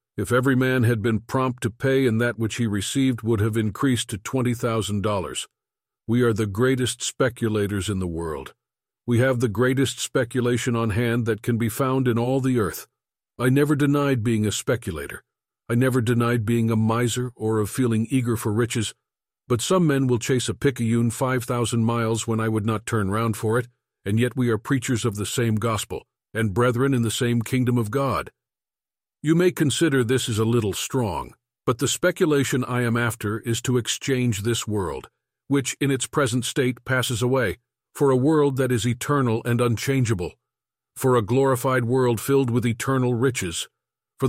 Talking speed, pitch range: 190 wpm, 115-130 Hz